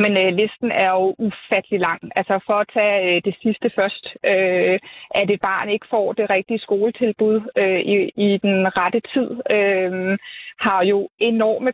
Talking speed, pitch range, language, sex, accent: 150 wpm, 195-240 Hz, Danish, female, native